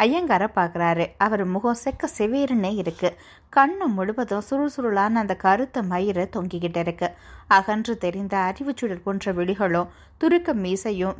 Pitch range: 185-240 Hz